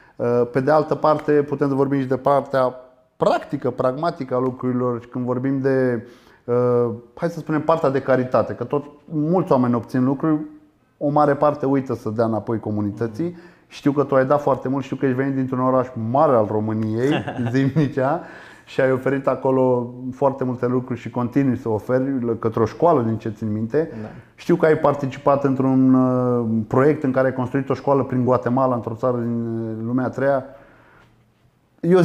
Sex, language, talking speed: male, Romanian, 175 wpm